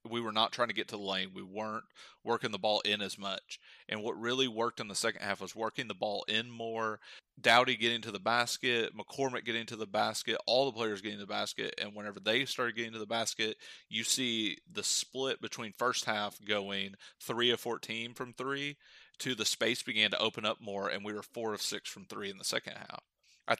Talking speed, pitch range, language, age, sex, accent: 230 wpm, 100-115 Hz, English, 30-49, male, American